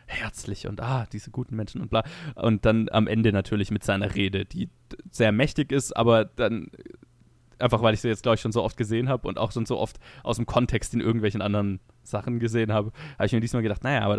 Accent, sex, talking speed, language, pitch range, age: German, male, 235 wpm, German, 110-120 Hz, 20-39